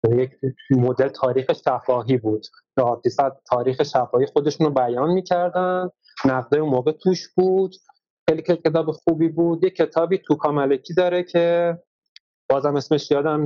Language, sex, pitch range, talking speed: Persian, male, 125-160 Hz, 130 wpm